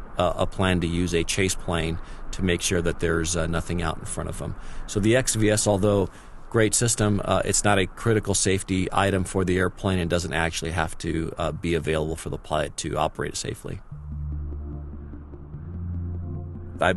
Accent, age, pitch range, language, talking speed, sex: American, 40-59, 85-105 Hz, English, 180 wpm, male